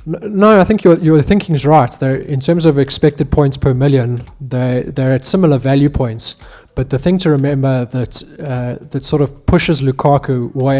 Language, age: English, 20-39